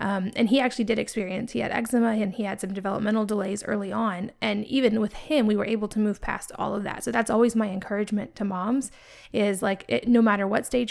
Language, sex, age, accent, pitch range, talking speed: English, female, 20-39, American, 200-225 Hz, 240 wpm